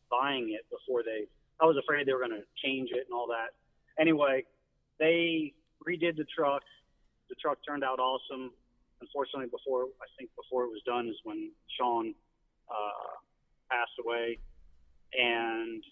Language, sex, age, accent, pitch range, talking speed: English, male, 40-59, American, 125-155 Hz, 155 wpm